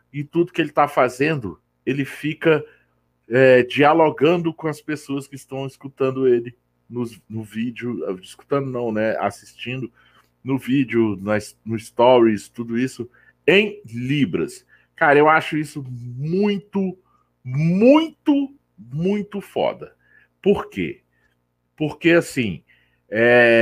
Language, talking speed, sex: Portuguese, 110 wpm, male